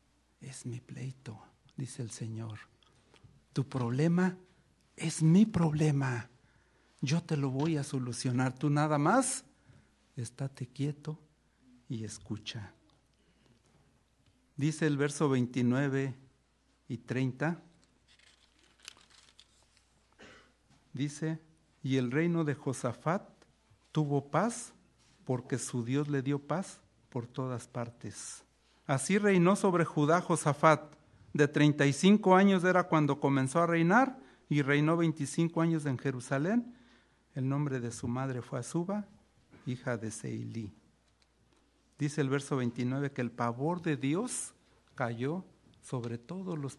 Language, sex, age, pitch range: Spanish, male, 60-79, 120-155 Hz